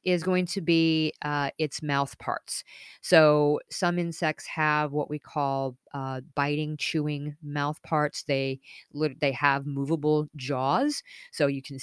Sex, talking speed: female, 140 wpm